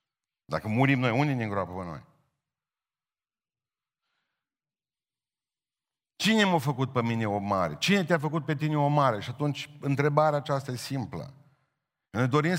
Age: 50-69